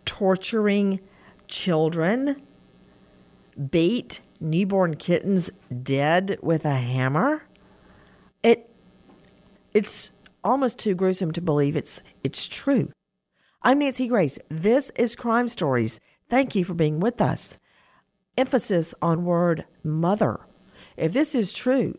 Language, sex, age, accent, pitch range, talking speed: English, female, 50-69, American, 160-210 Hz, 110 wpm